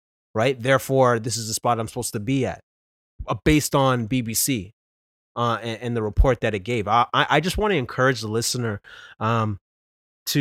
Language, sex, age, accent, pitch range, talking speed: English, male, 20-39, American, 105-130 Hz, 190 wpm